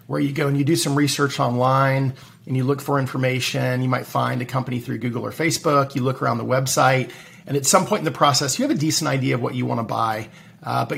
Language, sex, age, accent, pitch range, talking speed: English, male, 40-59, American, 130-155 Hz, 255 wpm